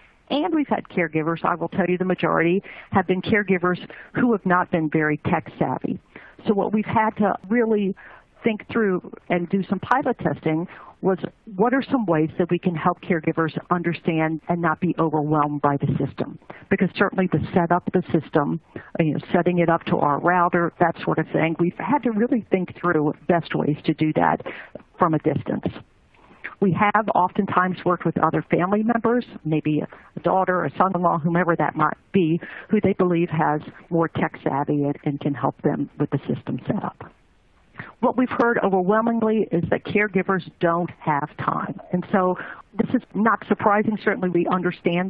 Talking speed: 175 wpm